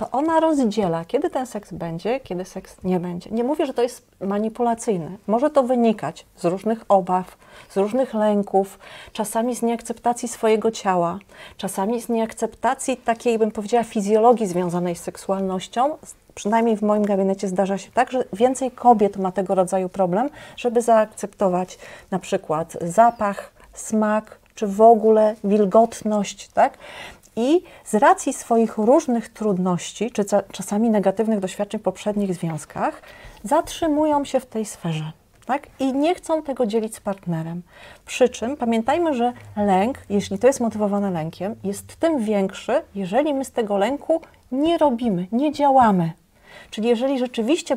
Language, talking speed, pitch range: Polish, 150 wpm, 195-250 Hz